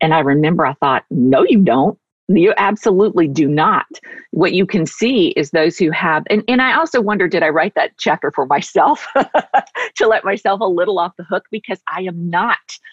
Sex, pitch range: female, 165-225 Hz